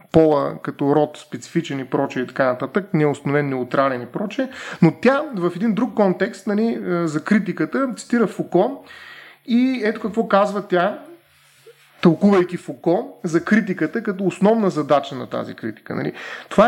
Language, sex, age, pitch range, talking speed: Bulgarian, male, 30-49, 160-225 Hz, 150 wpm